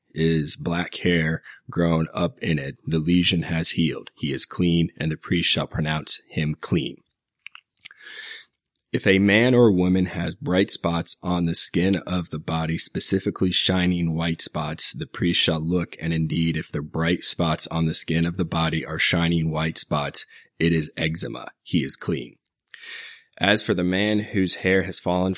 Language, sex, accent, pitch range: English, male, American, 80-95 Hz